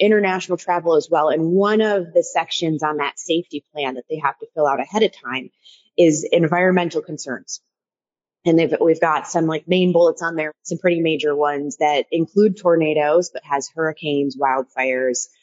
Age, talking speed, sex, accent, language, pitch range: 30-49, 175 wpm, female, American, English, 155-215 Hz